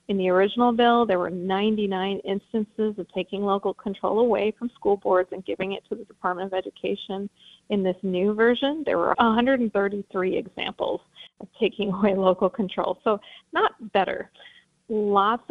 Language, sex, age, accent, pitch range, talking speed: English, female, 40-59, American, 190-220 Hz, 160 wpm